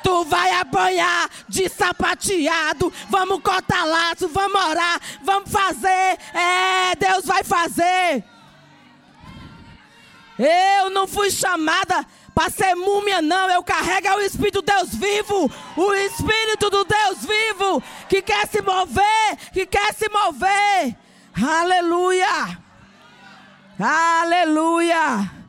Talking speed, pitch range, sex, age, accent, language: 110 wpm, 240-375 Hz, female, 20-39, Brazilian, Portuguese